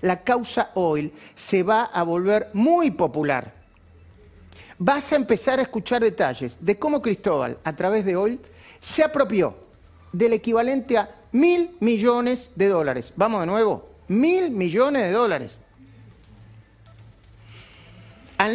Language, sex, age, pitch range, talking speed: Spanish, male, 40-59, 150-240 Hz, 125 wpm